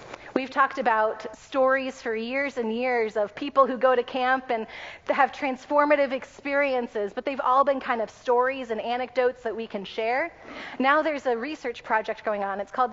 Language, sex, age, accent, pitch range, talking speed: English, female, 30-49, American, 210-260 Hz, 185 wpm